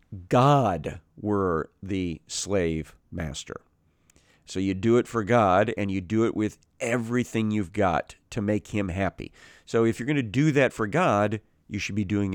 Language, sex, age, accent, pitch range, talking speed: English, male, 50-69, American, 95-120 Hz, 175 wpm